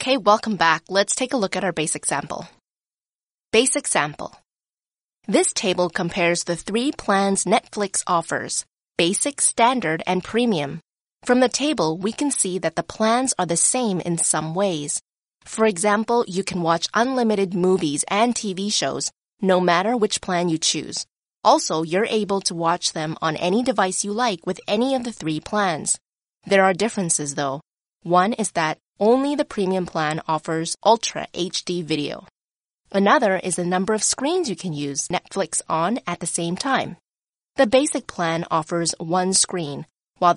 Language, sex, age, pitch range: Chinese, female, 20-39, 170-220 Hz